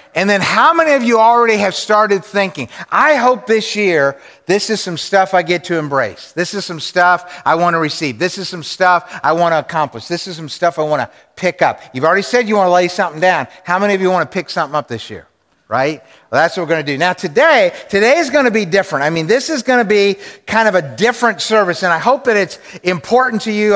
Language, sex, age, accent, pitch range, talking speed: English, male, 50-69, American, 180-255 Hz, 260 wpm